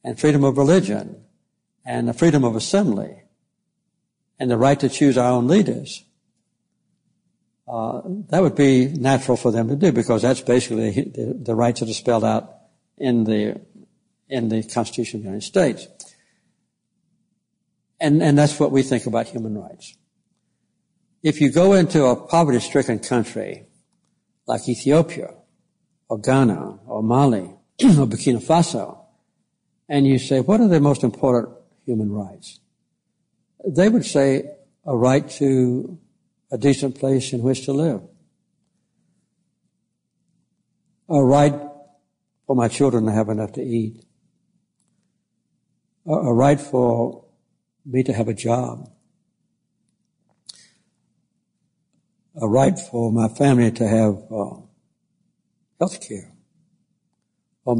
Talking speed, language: 125 wpm, English